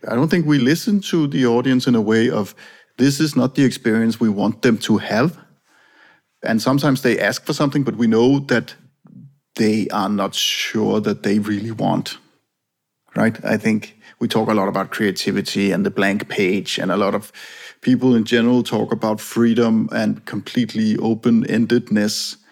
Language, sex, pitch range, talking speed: English, male, 110-130 Hz, 175 wpm